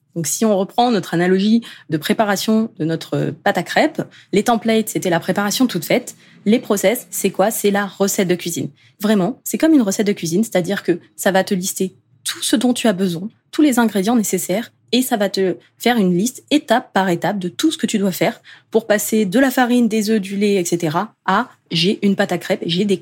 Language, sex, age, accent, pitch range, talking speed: French, female, 20-39, French, 175-215 Hz, 230 wpm